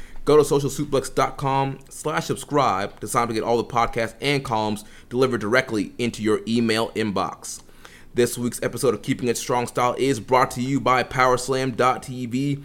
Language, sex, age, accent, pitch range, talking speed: English, male, 30-49, American, 110-135 Hz, 155 wpm